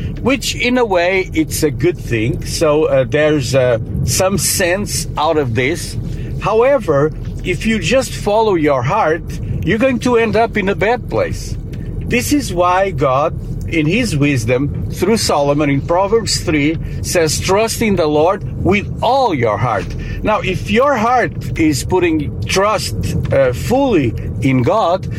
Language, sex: English, male